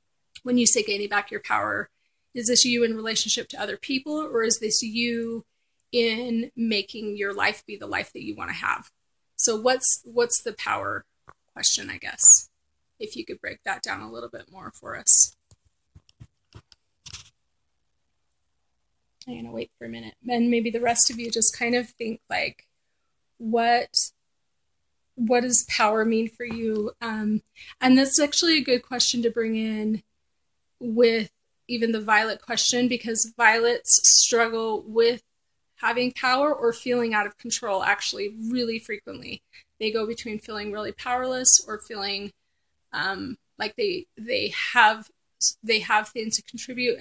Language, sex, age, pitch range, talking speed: English, female, 30-49, 215-245 Hz, 160 wpm